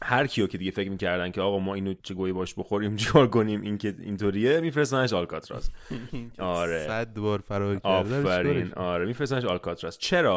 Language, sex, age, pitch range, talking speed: Persian, male, 30-49, 85-115 Hz, 170 wpm